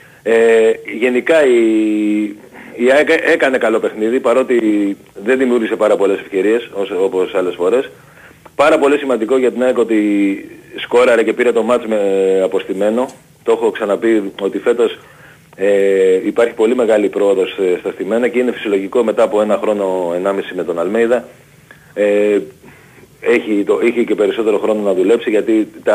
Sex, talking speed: male, 150 wpm